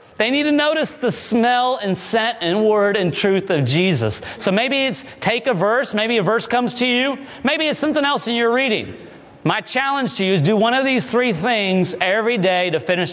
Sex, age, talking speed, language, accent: male, 30-49, 220 wpm, English, American